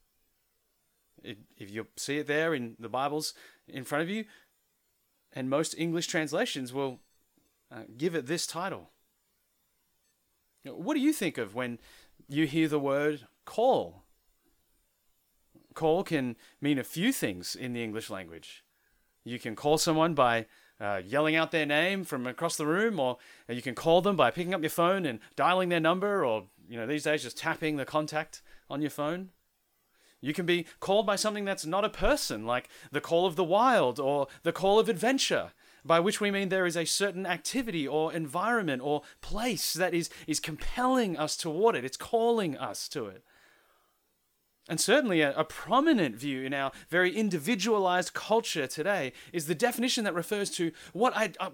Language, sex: English, male